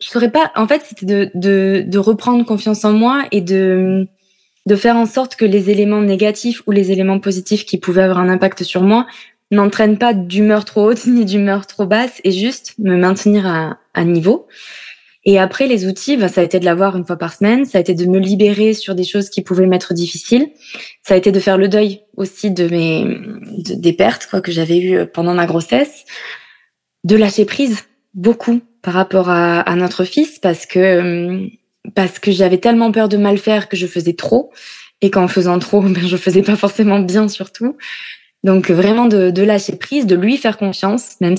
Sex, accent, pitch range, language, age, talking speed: female, French, 185-220 Hz, French, 20-39, 205 wpm